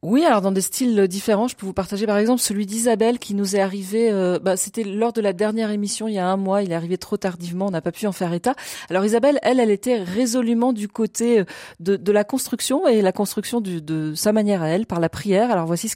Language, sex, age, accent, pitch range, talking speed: French, female, 40-59, French, 175-225 Hz, 265 wpm